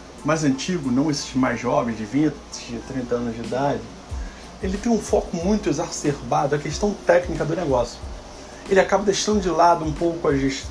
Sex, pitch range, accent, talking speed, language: male, 140-195 Hz, Brazilian, 180 wpm, Portuguese